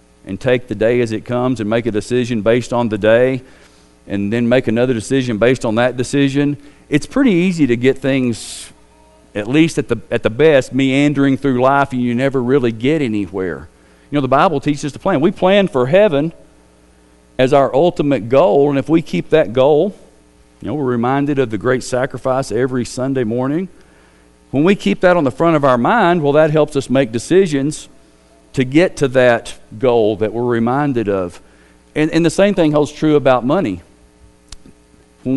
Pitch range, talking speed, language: 95-145 Hz, 190 wpm, English